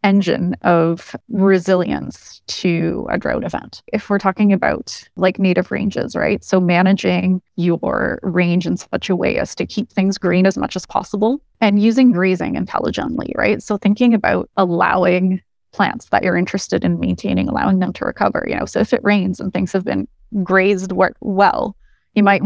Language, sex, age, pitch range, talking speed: English, female, 20-39, 180-205 Hz, 175 wpm